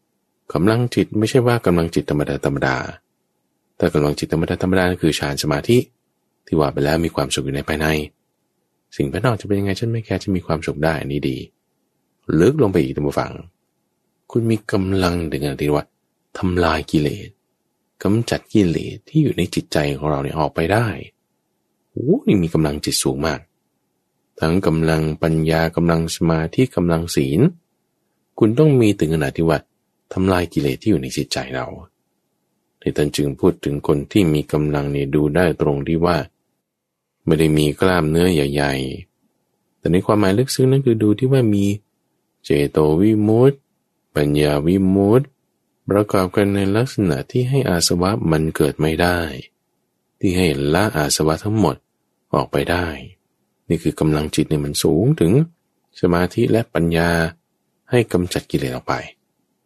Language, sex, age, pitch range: English, male, 20-39, 75-105 Hz